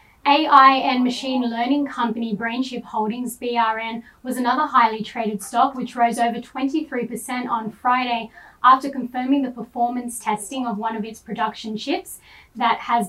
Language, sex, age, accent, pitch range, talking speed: English, female, 10-29, Australian, 225-255 Hz, 145 wpm